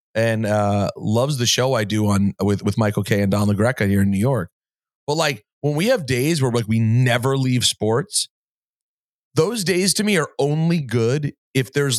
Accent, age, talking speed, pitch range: American, 30-49, 200 wpm, 110-150 Hz